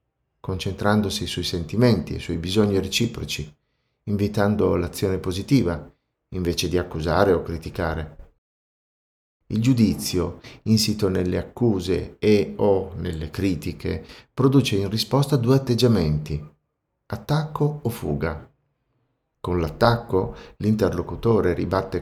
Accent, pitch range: native, 85-110 Hz